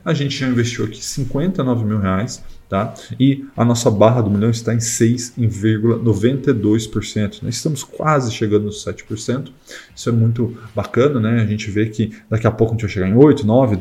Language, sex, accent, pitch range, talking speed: Portuguese, male, Brazilian, 110-130 Hz, 185 wpm